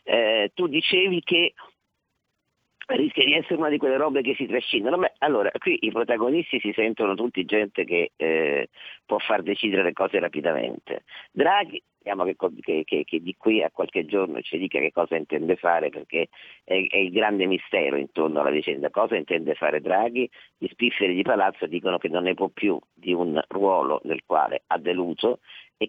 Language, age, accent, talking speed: Italian, 50-69, native, 185 wpm